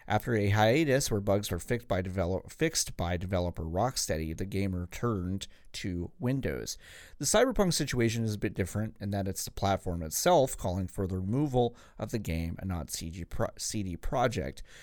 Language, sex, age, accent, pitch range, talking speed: English, male, 30-49, American, 95-125 Hz, 160 wpm